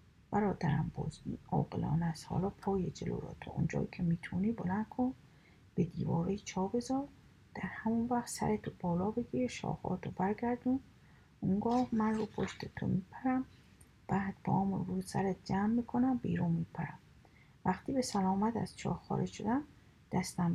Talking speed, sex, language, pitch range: 145 wpm, female, Persian, 165-220 Hz